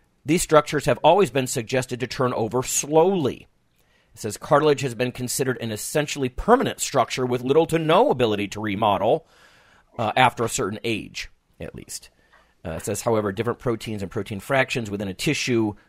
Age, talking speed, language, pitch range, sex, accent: 40-59, 175 wpm, English, 105-135 Hz, male, American